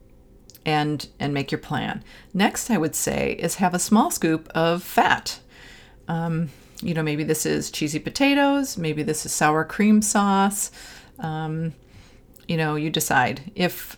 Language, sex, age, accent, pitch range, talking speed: English, female, 40-59, American, 155-205 Hz, 155 wpm